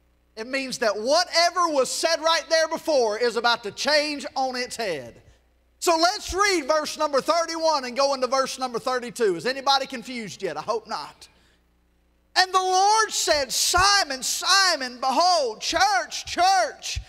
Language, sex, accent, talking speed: English, male, American, 155 wpm